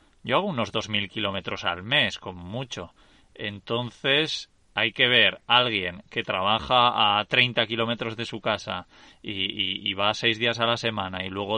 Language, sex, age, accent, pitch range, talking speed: Spanish, male, 20-39, Spanish, 100-130 Hz, 180 wpm